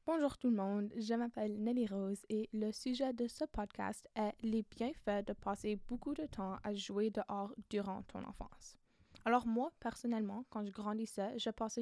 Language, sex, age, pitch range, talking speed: French, female, 10-29, 200-235 Hz, 185 wpm